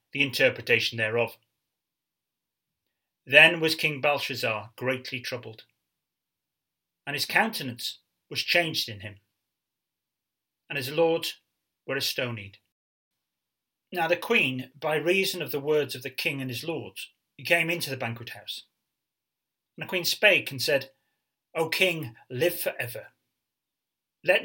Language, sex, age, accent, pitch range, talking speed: English, male, 30-49, British, 120-170 Hz, 130 wpm